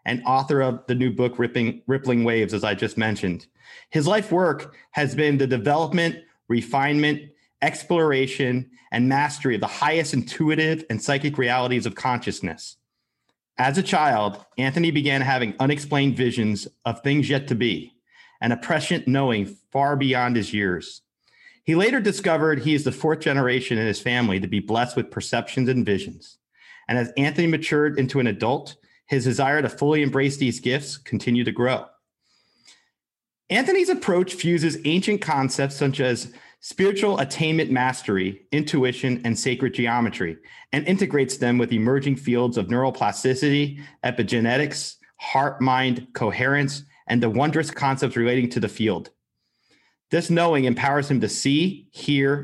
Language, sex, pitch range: English, male, 120-150 Hz